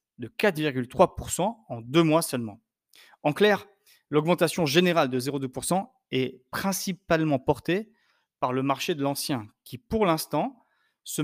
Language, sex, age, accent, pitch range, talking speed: French, male, 30-49, French, 125-180 Hz, 130 wpm